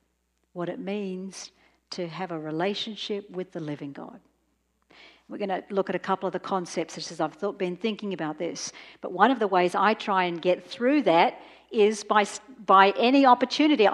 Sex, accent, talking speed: female, Australian, 190 wpm